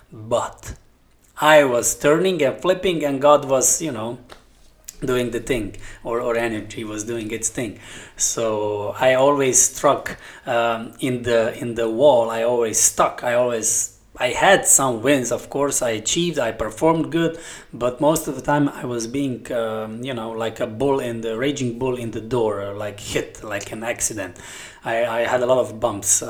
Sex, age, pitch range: male, 20-39, 110-135 Hz